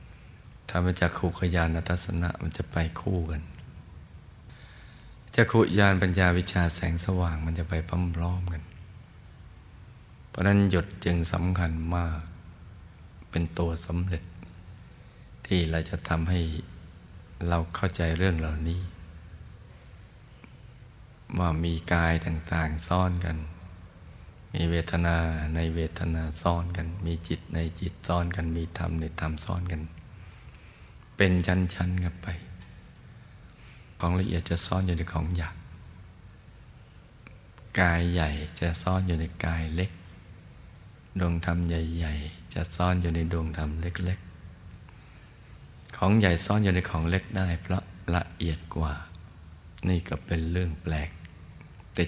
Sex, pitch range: male, 80-90 Hz